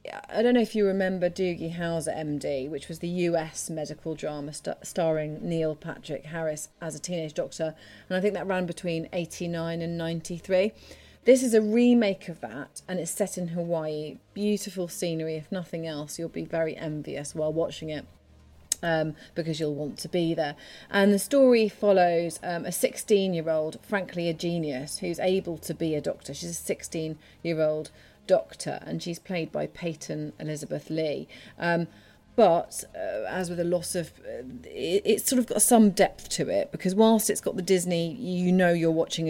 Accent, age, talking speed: British, 30-49, 175 wpm